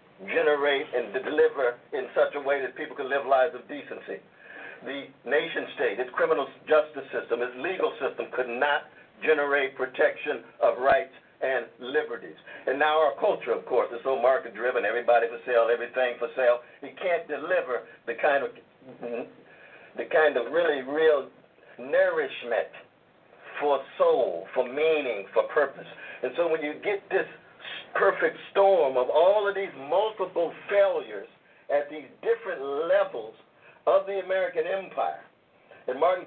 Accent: American